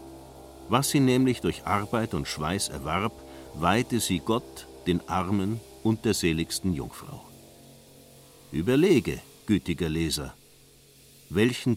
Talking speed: 105 wpm